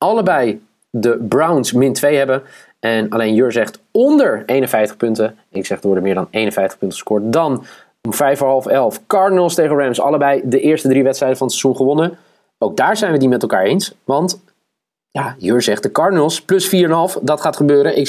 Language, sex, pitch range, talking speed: Dutch, male, 120-170 Hz, 190 wpm